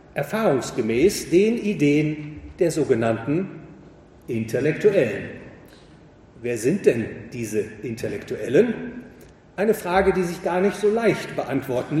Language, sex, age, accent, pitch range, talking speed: English, male, 40-59, German, 145-200 Hz, 100 wpm